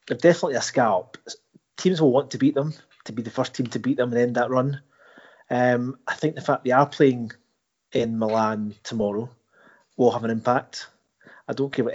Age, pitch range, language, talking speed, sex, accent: 30-49, 115-140 Hz, English, 205 wpm, male, British